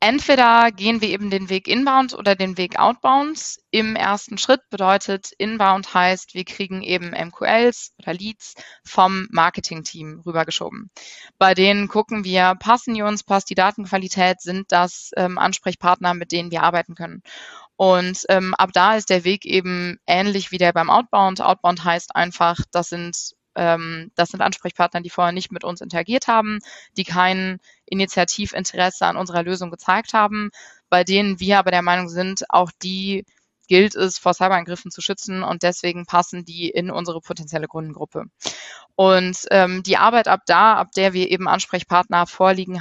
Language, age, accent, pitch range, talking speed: German, 20-39, German, 175-200 Hz, 165 wpm